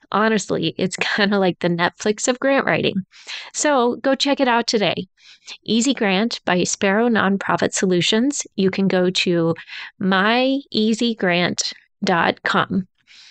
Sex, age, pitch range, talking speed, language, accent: female, 20-39, 190-245 Hz, 120 wpm, English, American